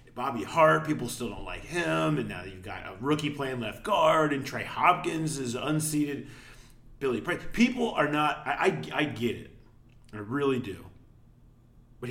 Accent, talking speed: American, 175 wpm